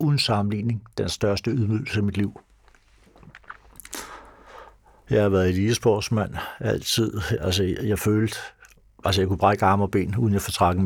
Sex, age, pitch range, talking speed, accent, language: male, 60-79, 95-110 Hz, 160 wpm, native, Danish